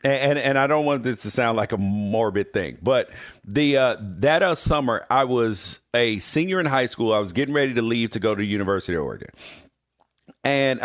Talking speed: 220 wpm